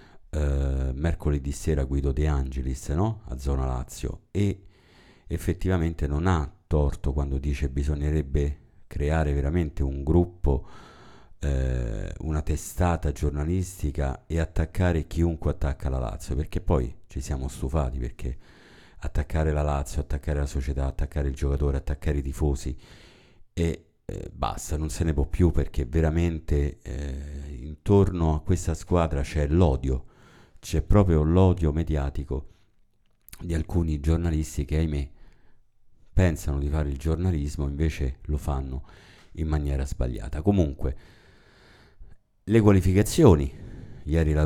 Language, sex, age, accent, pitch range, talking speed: Italian, male, 50-69, native, 70-90 Hz, 125 wpm